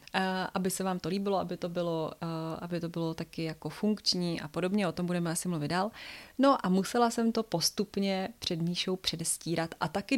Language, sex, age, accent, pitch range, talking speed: Czech, female, 20-39, native, 170-195 Hz, 185 wpm